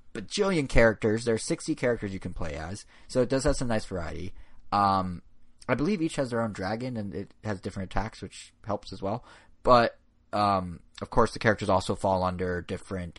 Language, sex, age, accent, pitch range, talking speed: English, male, 30-49, American, 95-120 Hz, 205 wpm